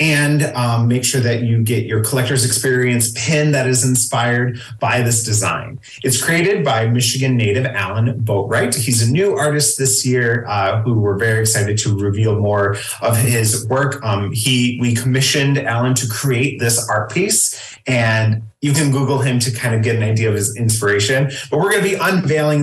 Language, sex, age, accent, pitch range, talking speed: English, male, 30-49, American, 110-135 Hz, 190 wpm